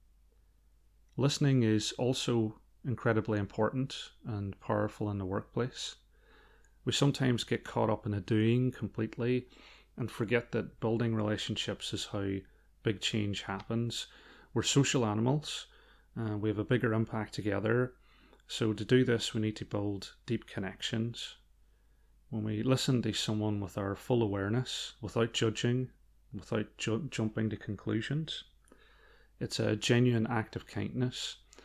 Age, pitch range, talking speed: 30-49, 105-120 Hz, 135 wpm